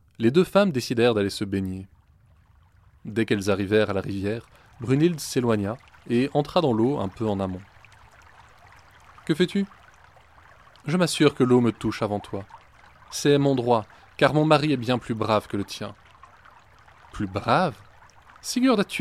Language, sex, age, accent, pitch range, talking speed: French, male, 20-39, French, 100-130 Hz, 170 wpm